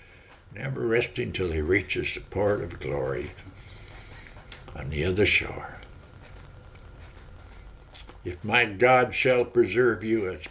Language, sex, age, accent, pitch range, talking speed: English, male, 60-79, American, 95-125 Hz, 115 wpm